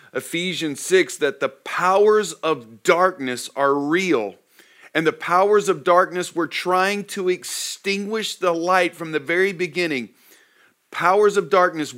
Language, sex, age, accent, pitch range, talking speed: English, male, 40-59, American, 150-190 Hz, 135 wpm